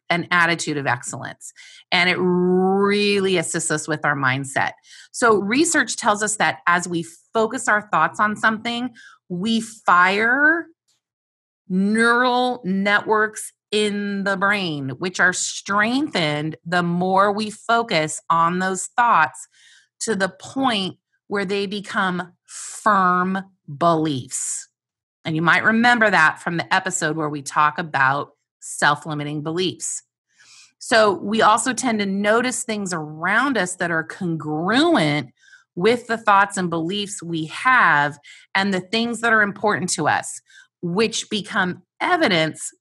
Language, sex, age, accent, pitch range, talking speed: English, female, 30-49, American, 170-225 Hz, 130 wpm